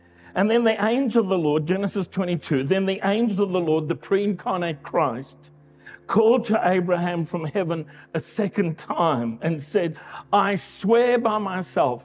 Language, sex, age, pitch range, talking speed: English, male, 60-79, 155-205 Hz, 160 wpm